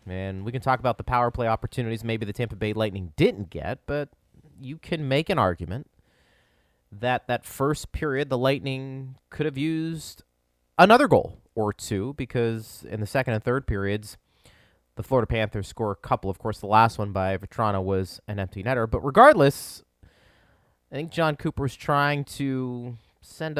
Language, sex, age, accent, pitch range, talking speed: English, male, 30-49, American, 95-130 Hz, 175 wpm